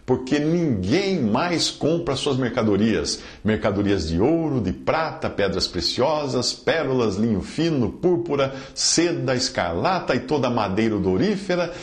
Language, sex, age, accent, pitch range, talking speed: English, male, 50-69, Brazilian, 105-155 Hz, 115 wpm